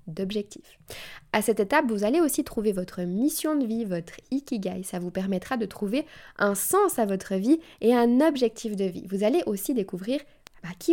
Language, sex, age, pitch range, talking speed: French, female, 20-39, 190-270 Hz, 185 wpm